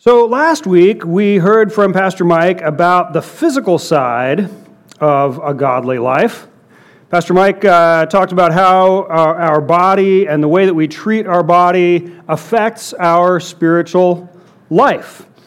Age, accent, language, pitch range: 40-59, American, English, 155-195 Hz